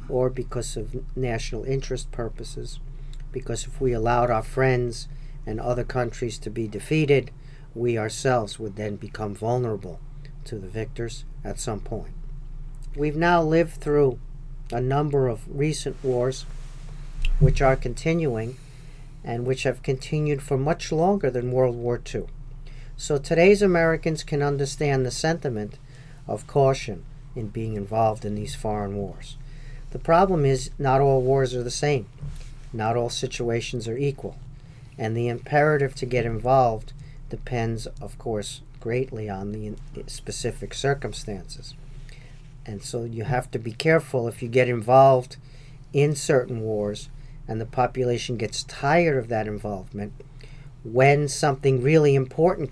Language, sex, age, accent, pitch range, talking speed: English, male, 50-69, American, 115-140 Hz, 140 wpm